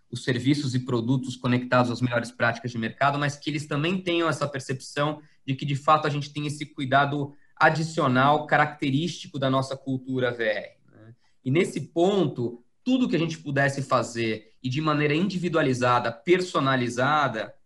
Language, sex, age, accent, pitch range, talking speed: Portuguese, male, 20-39, Brazilian, 130-150 Hz, 160 wpm